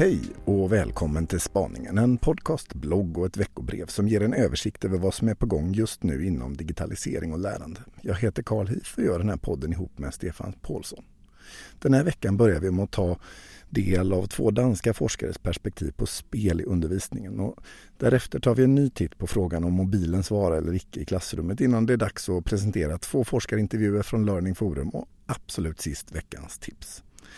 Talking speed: 195 wpm